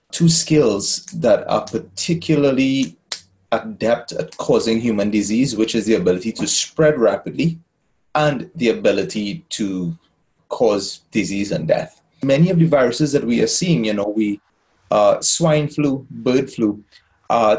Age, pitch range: 30-49, 110-150 Hz